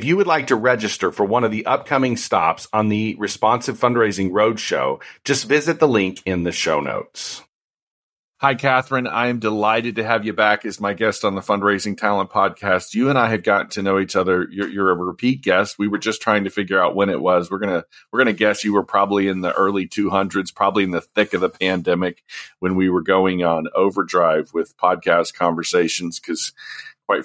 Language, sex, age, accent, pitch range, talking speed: English, male, 40-59, American, 95-115 Hz, 215 wpm